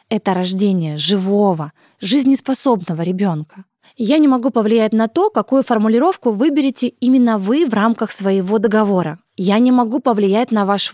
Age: 20-39